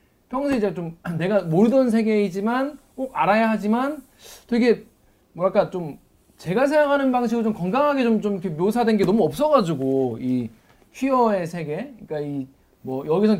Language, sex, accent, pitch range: Korean, male, native, 145-225 Hz